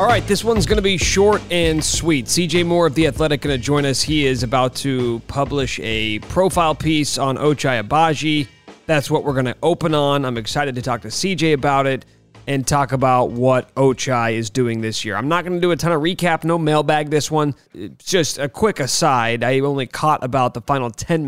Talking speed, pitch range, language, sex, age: 225 wpm, 120-155 Hz, English, male, 30-49